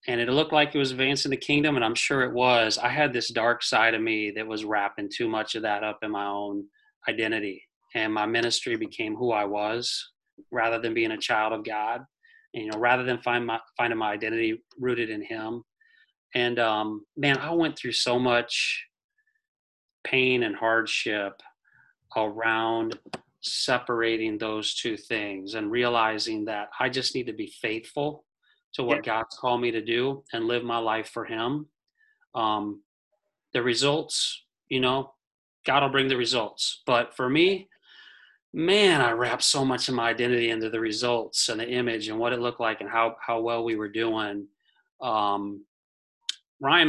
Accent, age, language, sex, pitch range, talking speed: American, 30-49, English, male, 110-140 Hz, 180 wpm